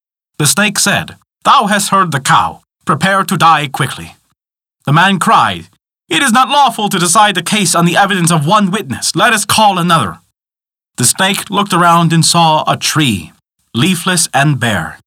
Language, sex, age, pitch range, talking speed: English, male, 30-49, 135-185 Hz, 175 wpm